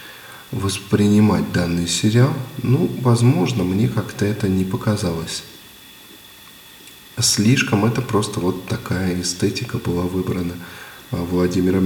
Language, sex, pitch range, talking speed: Russian, male, 90-120 Hz, 95 wpm